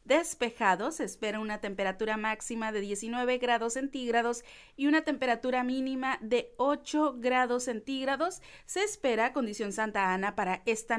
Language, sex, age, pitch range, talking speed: Spanish, female, 40-59, 220-275 Hz, 135 wpm